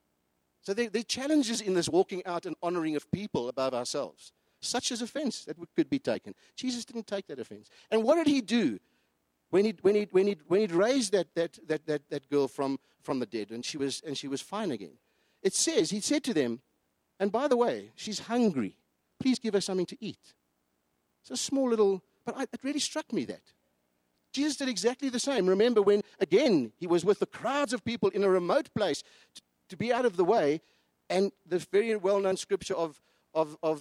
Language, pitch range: English, 155-245 Hz